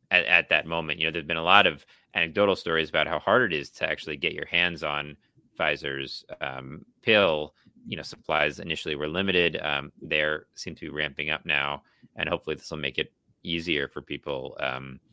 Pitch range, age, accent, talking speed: 75-105 Hz, 30-49, American, 205 wpm